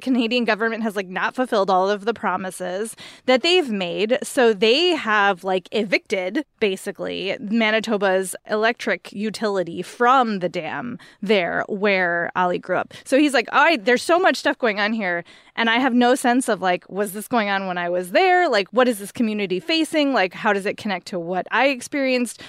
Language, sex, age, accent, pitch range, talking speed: English, female, 20-39, American, 200-265 Hz, 195 wpm